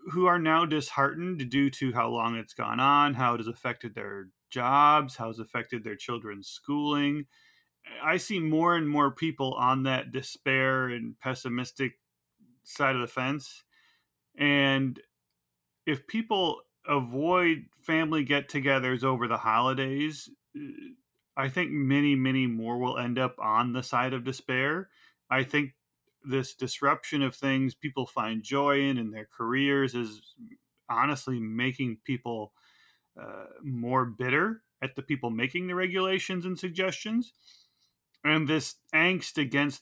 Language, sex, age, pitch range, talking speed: English, male, 30-49, 125-155 Hz, 140 wpm